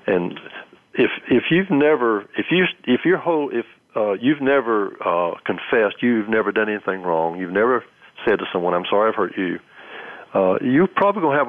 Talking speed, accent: 190 wpm, American